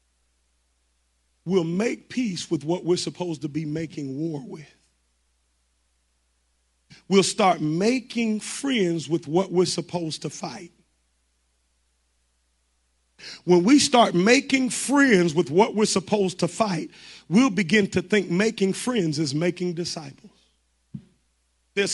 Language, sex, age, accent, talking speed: English, male, 40-59, American, 120 wpm